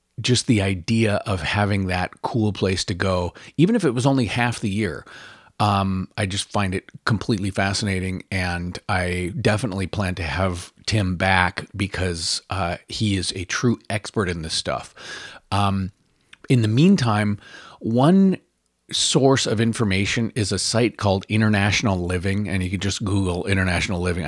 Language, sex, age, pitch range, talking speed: English, male, 30-49, 90-110 Hz, 160 wpm